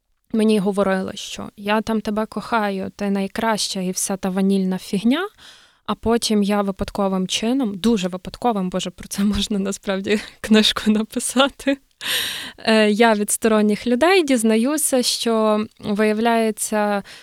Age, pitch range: 20-39, 195-230 Hz